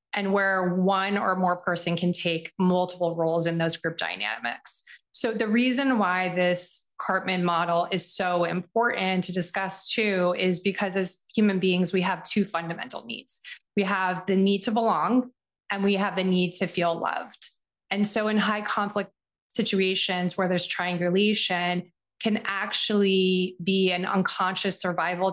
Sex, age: female, 20-39